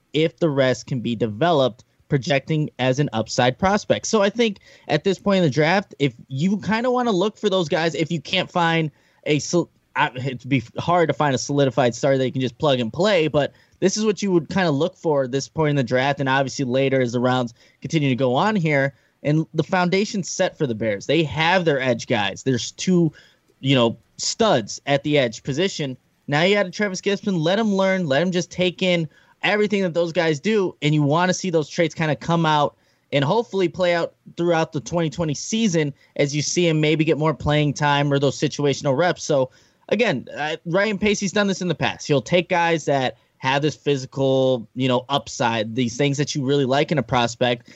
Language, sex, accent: English, male, American